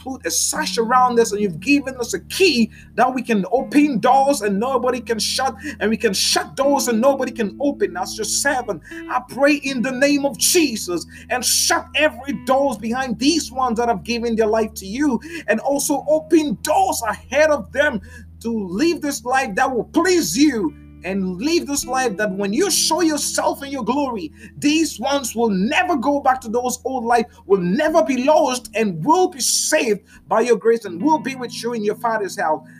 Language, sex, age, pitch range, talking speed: Finnish, male, 30-49, 220-290 Hz, 200 wpm